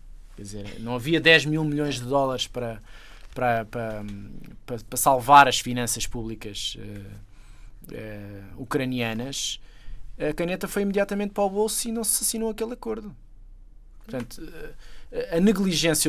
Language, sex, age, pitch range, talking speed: Portuguese, male, 20-39, 120-175 Hz, 140 wpm